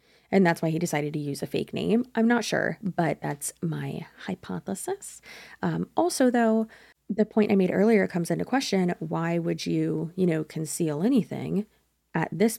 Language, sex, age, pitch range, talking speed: English, female, 20-39, 160-210 Hz, 175 wpm